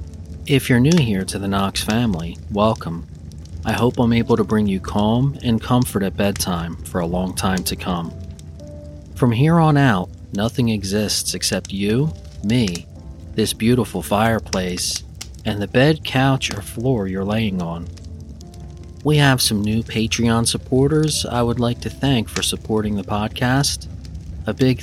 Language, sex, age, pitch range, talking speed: English, male, 40-59, 90-115 Hz, 155 wpm